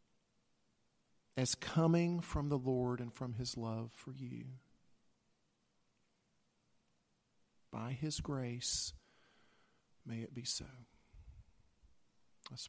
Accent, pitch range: American, 110-130 Hz